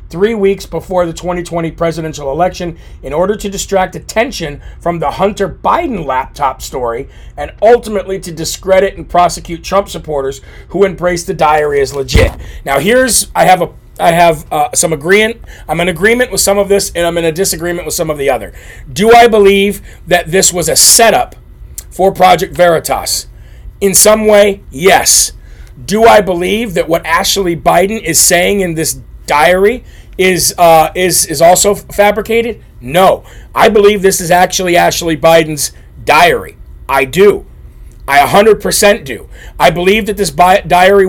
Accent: American